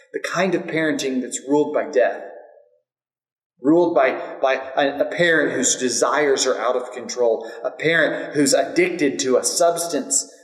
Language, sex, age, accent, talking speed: English, male, 30-49, American, 150 wpm